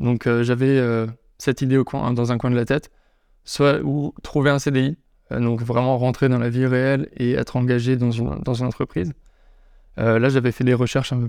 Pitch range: 120-135 Hz